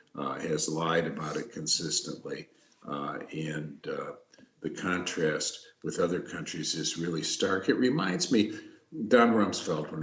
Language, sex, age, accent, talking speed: English, male, 50-69, American, 140 wpm